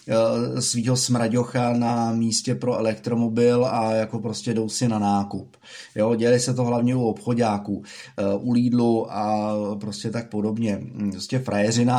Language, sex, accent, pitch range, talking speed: Czech, male, native, 110-120 Hz, 135 wpm